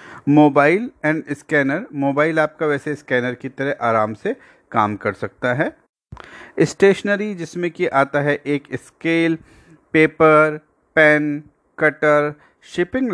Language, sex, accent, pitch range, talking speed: Hindi, male, native, 145-180 Hz, 120 wpm